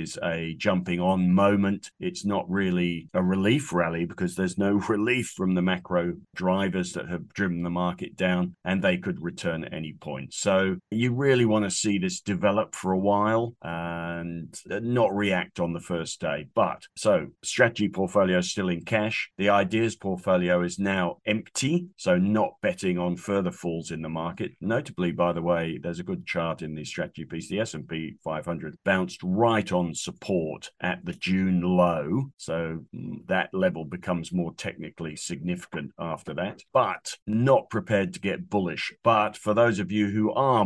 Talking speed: 175 wpm